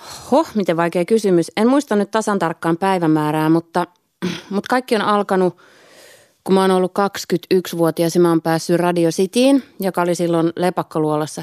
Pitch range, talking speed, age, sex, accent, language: 155-185 Hz, 160 wpm, 30-49, female, native, Finnish